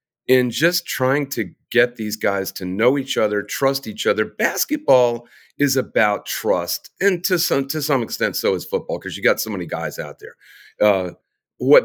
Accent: American